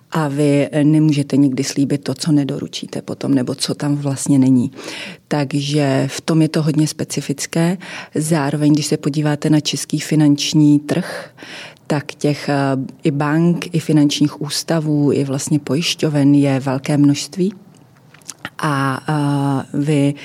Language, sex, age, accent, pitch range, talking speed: Czech, female, 30-49, native, 140-155 Hz, 130 wpm